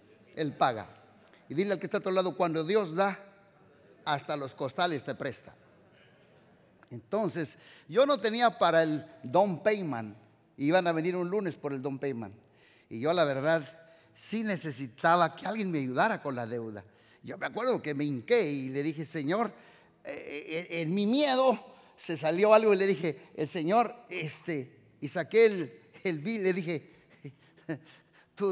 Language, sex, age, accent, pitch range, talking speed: Spanish, male, 50-69, Mexican, 130-185 Hz, 165 wpm